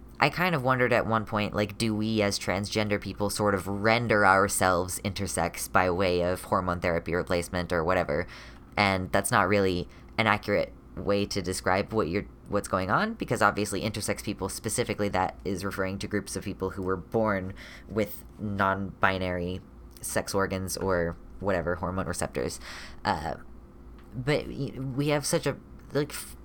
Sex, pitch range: female, 90-105 Hz